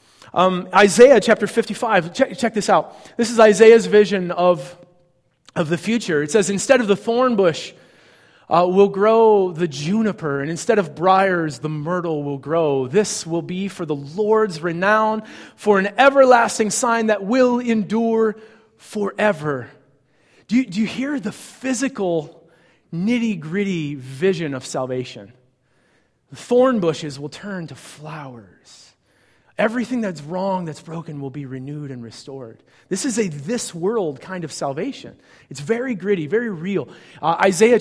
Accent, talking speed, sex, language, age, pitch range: American, 150 wpm, male, English, 30-49, 165-220 Hz